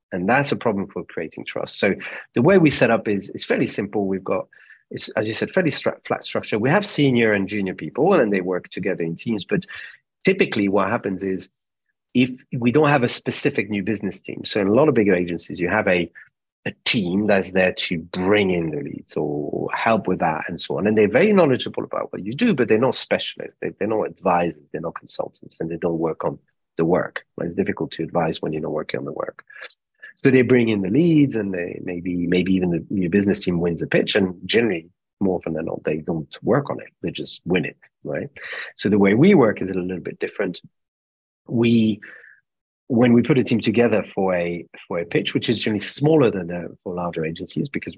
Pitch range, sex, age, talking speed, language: 90-115 Hz, male, 40-59, 225 wpm, English